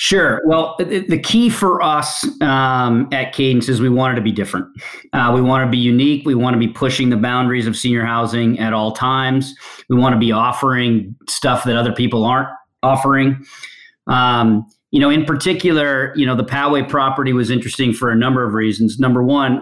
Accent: American